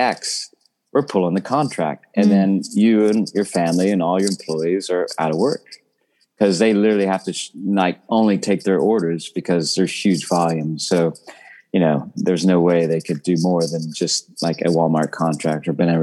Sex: male